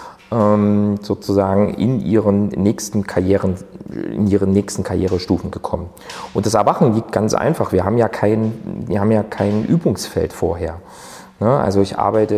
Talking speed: 140 wpm